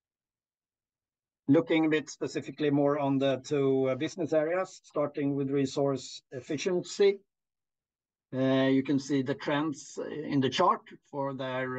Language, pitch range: Swedish, 125-145 Hz